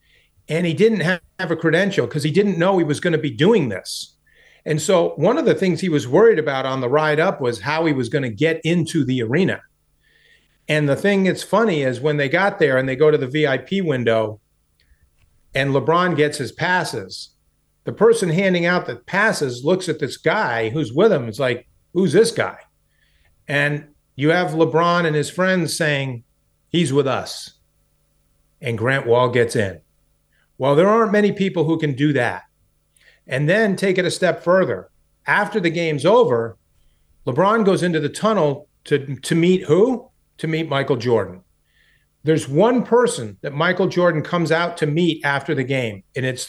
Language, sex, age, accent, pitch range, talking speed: English, male, 40-59, American, 135-180 Hz, 185 wpm